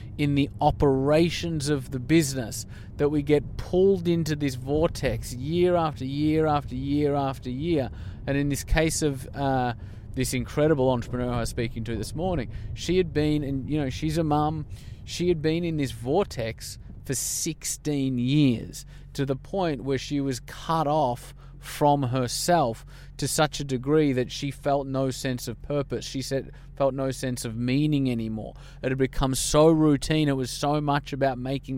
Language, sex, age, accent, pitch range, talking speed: English, male, 30-49, Australian, 120-150 Hz, 175 wpm